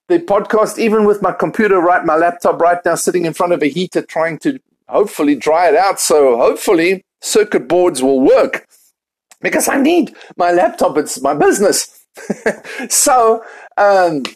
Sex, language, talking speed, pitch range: male, English, 165 wpm, 180-245 Hz